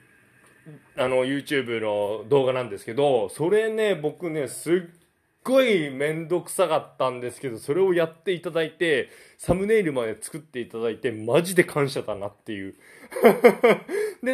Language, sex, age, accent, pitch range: Japanese, male, 20-39, native, 130-180 Hz